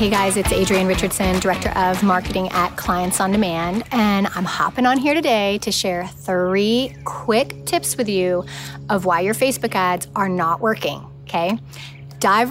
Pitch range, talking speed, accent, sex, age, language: 185-230 Hz, 170 wpm, American, female, 30-49, English